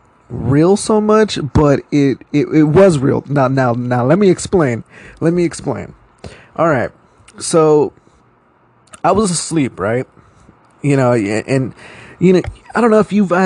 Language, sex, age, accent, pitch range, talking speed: English, male, 20-39, American, 125-155 Hz, 155 wpm